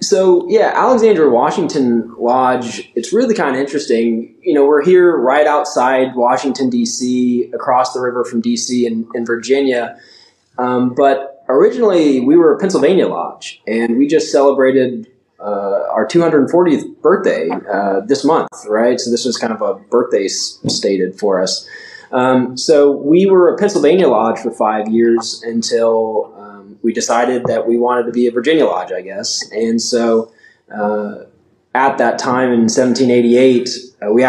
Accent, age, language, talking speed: American, 20-39, English, 155 wpm